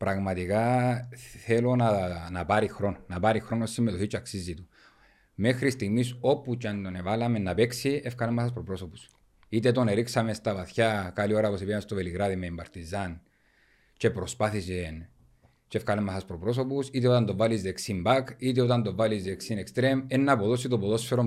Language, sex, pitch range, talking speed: Greek, male, 100-125 Hz, 170 wpm